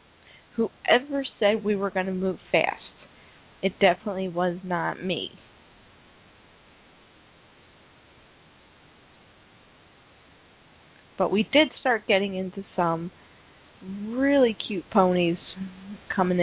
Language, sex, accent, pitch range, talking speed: English, female, American, 180-205 Hz, 90 wpm